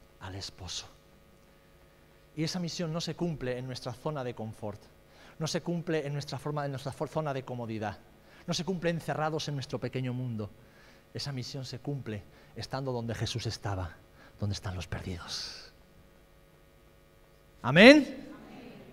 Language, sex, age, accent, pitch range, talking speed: Spanish, male, 40-59, Spanish, 105-160 Hz, 135 wpm